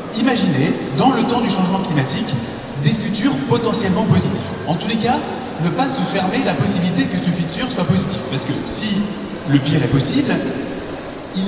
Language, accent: French, French